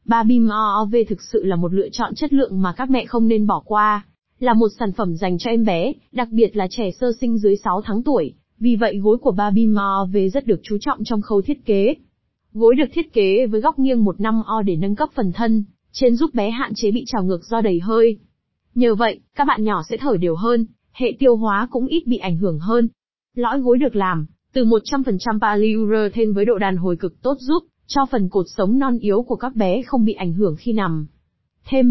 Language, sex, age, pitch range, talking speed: Vietnamese, female, 20-39, 200-245 Hz, 230 wpm